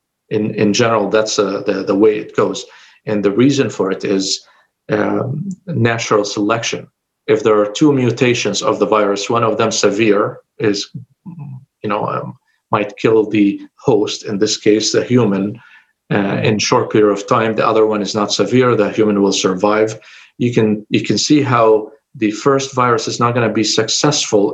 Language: English